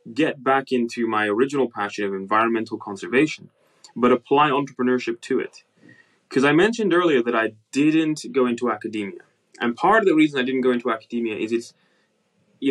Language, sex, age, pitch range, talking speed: English, male, 20-39, 120-190 Hz, 175 wpm